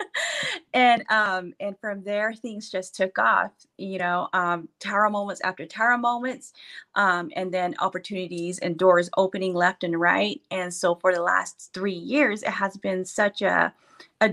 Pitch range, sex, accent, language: 185-215 Hz, female, American, English